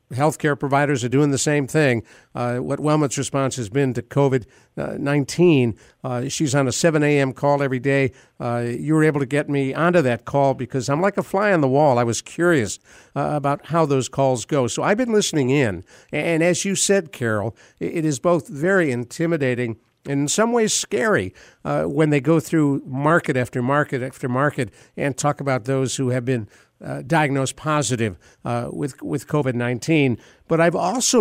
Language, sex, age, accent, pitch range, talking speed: English, male, 60-79, American, 125-155 Hz, 190 wpm